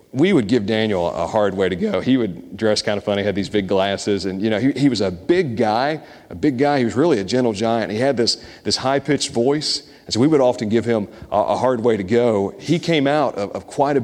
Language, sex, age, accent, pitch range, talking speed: English, male, 40-59, American, 100-130 Hz, 270 wpm